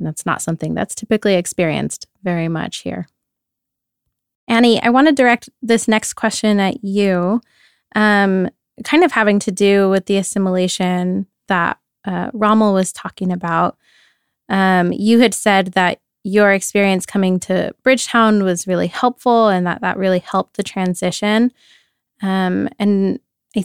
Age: 20-39